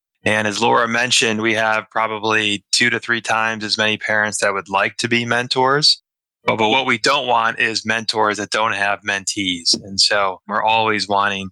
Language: English